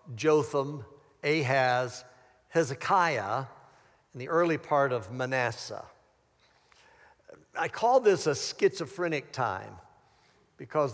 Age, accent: 60-79, American